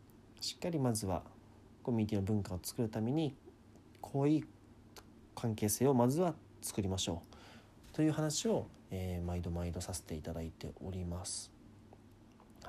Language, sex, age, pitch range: Japanese, male, 40-59, 100-120 Hz